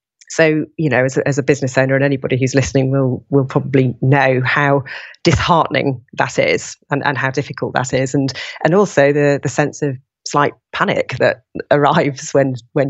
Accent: British